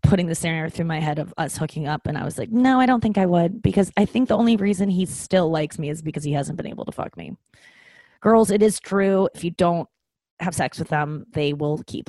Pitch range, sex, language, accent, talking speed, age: 155-200 Hz, female, English, American, 265 wpm, 20-39